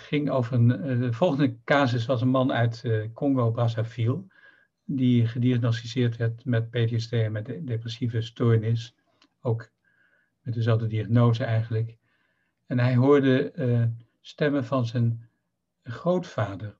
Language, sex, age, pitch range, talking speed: Dutch, male, 60-79, 115-135 Hz, 130 wpm